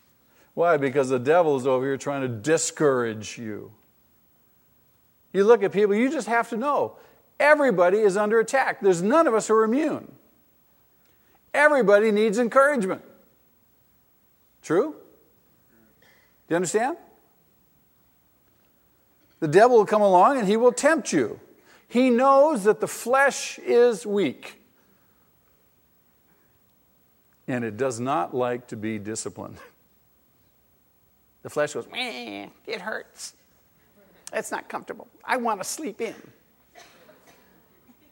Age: 50-69